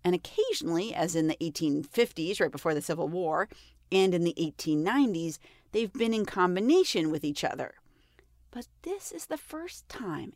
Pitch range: 160-260 Hz